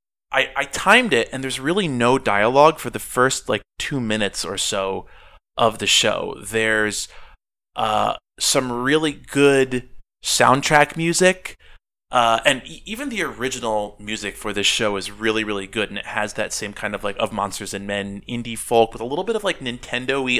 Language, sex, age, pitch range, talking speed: English, male, 20-39, 105-130 Hz, 180 wpm